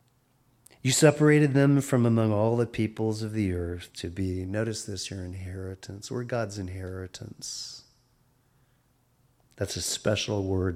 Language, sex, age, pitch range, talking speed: English, male, 40-59, 95-125 Hz, 135 wpm